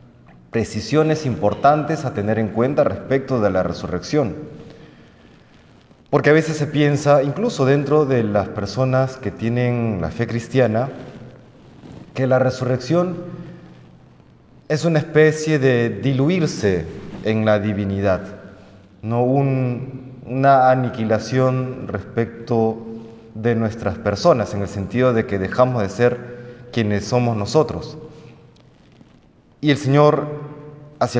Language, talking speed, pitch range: Spanish, 110 wpm, 110-135 Hz